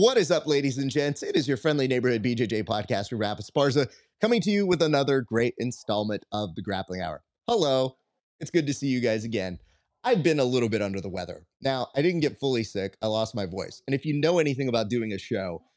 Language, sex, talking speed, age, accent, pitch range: English, male, 230 wpm, 30-49, American, 105-140 Hz